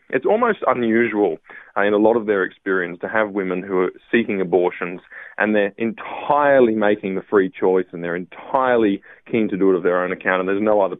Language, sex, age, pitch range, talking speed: English, male, 20-39, 95-115 Hz, 215 wpm